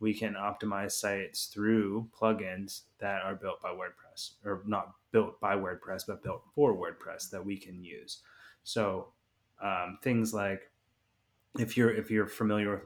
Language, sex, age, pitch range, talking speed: English, male, 20-39, 100-115 Hz, 155 wpm